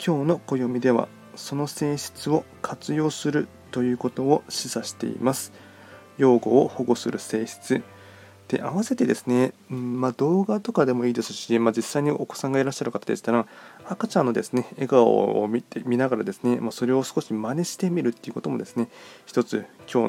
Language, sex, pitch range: Japanese, male, 115-140 Hz